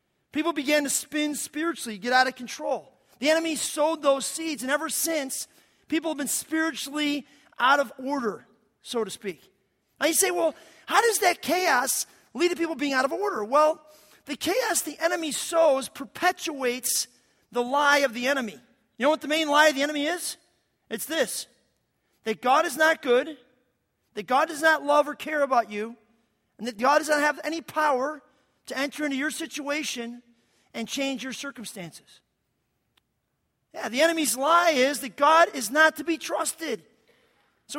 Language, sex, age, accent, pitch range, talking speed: English, male, 40-59, American, 260-320 Hz, 175 wpm